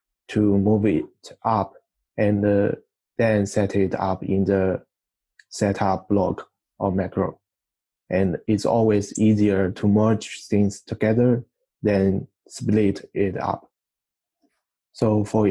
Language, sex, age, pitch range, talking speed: English, male, 20-39, 100-110 Hz, 115 wpm